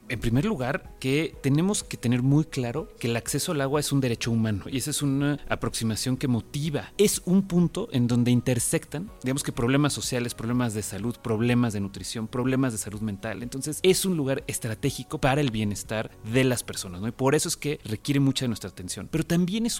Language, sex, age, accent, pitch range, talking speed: Spanish, male, 30-49, Mexican, 115-150 Hz, 210 wpm